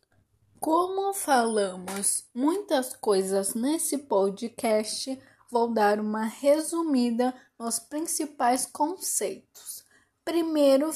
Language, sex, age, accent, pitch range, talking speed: Portuguese, female, 10-29, Brazilian, 225-290 Hz, 75 wpm